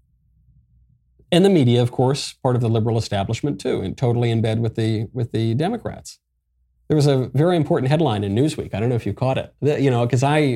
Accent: American